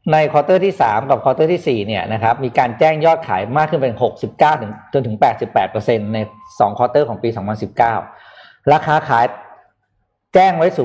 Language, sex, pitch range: Thai, male, 115-160 Hz